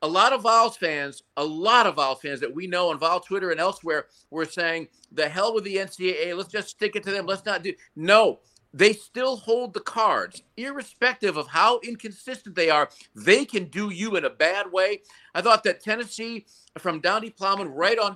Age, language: 50-69, English